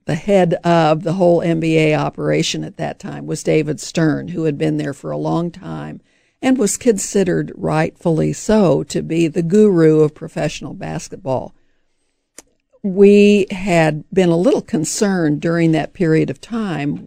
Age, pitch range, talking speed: 50-69, 155-185 Hz, 155 wpm